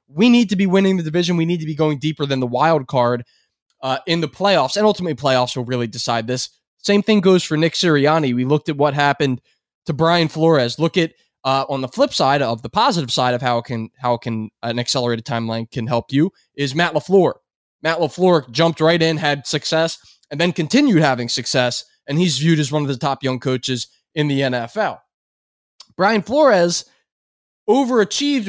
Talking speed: 200 wpm